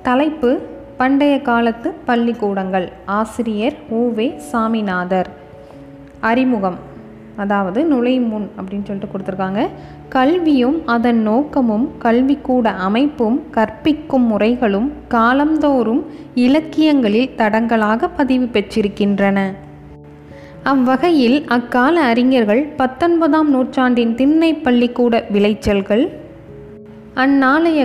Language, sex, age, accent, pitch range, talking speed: Tamil, female, 20-39, native, 205-265 Hz, 75 wpm